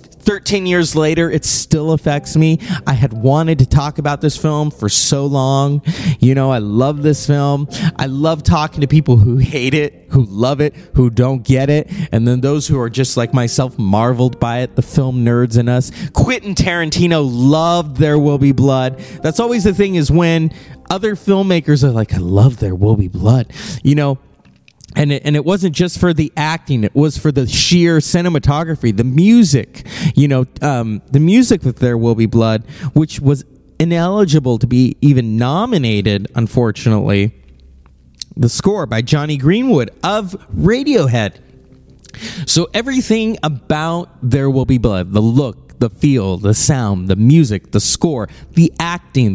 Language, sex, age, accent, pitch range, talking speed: English, male, 30-49, American, 125-165 Hz, 170 wpm